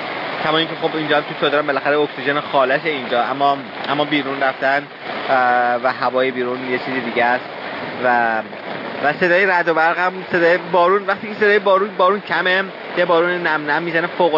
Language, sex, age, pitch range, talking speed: Persian, male, 30-49, 130-165 Hz, 160 wpm